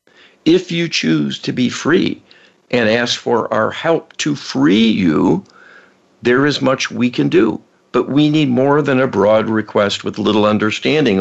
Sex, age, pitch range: male, 60-79, 105-145 Hz